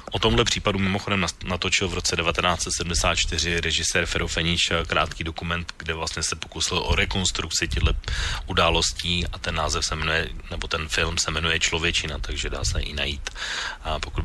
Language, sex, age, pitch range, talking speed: Slovak, male, 30-49, 80-95 Hz, 150 wpm